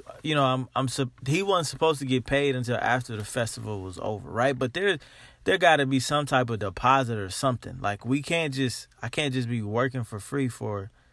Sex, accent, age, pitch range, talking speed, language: male, American, 20-39, 110-135 Hz, 215 wpm, English